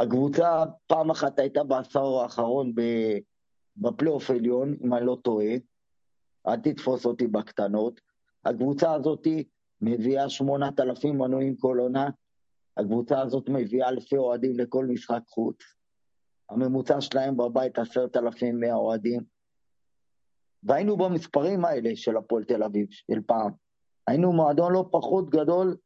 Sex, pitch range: male, 120-155 Hz